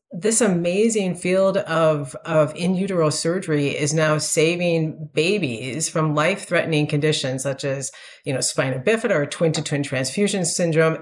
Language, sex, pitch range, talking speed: English, female, 150-180 Hz, 135 wpm